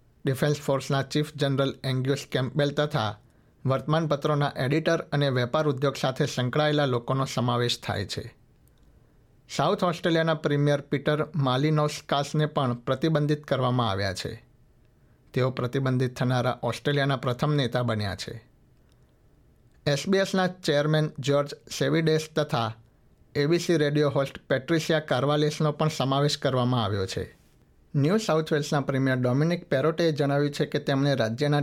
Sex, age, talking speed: male, 60-79, 95 wpm